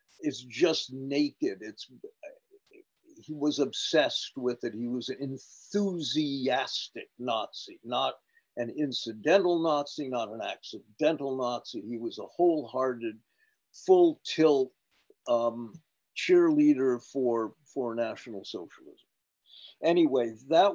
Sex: male